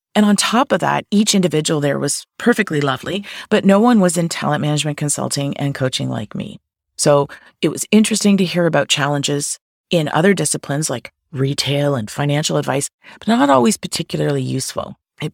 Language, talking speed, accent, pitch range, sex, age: English, 175 wpm, American, 135-175 Hz, female, 40-59